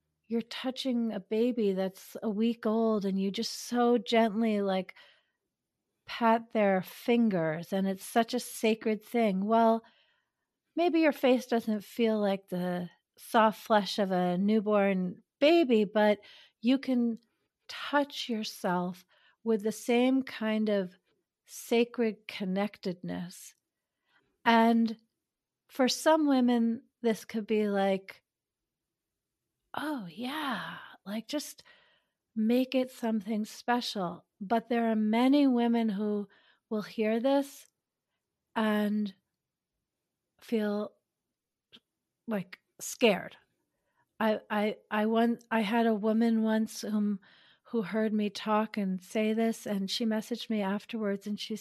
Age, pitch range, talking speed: 40-59, 205-235 Hz, 120 wpm